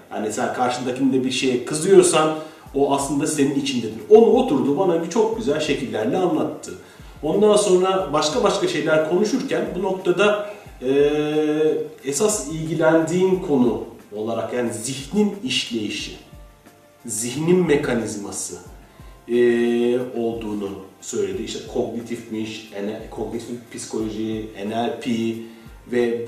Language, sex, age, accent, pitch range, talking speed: Turkish, male, 40-59, native, 120-155 Hz, 100 wpm